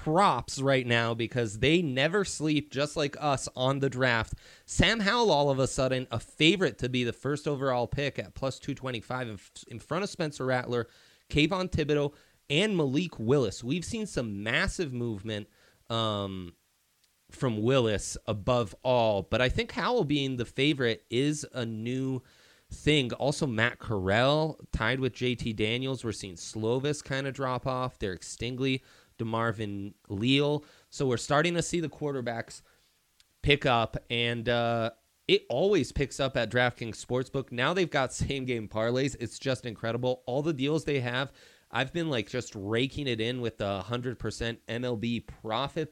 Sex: male